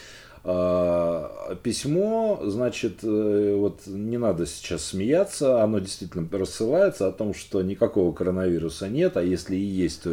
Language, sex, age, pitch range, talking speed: Russian, male, 40-59, 90-130 Hz, 125 wpm